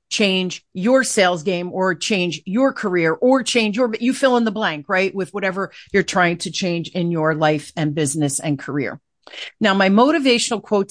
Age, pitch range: 40-59, 165-210 Hz